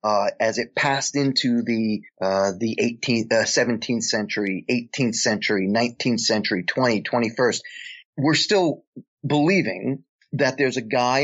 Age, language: 30-49, English